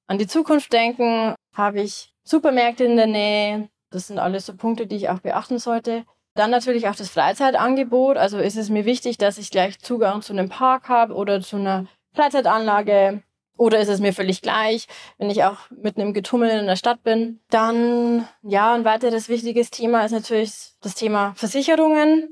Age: 20-39